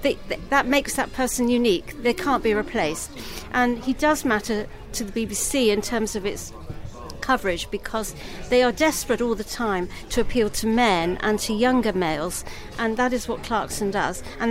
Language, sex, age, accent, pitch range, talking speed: English, female, 50-69, British, 200-245 Hz, 180 wpm